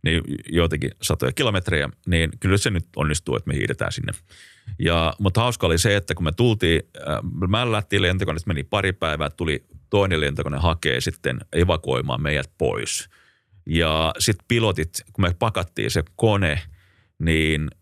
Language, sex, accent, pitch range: Finnish, male, native, 85-120 Hz